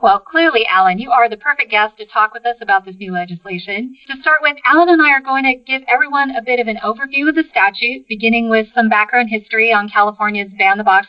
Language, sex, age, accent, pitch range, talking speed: English, female, 40-59, American, 205-270 Hz, 235 wpm